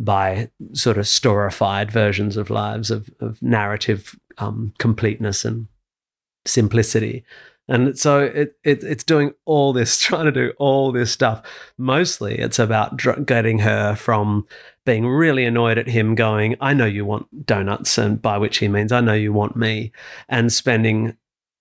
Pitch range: 105-120 Hz